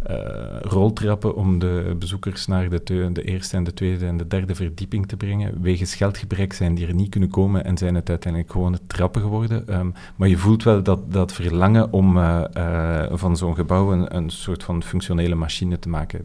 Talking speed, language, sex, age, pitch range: 200 wpm, Dutch, male, 40-59, 85-100 Hz